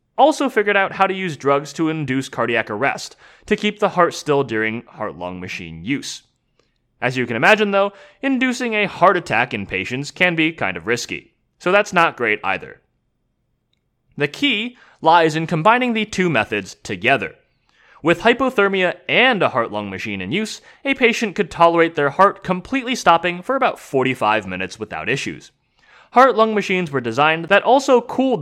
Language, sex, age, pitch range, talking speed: English, male, 20-39, 130-205 Hz, 165 wpm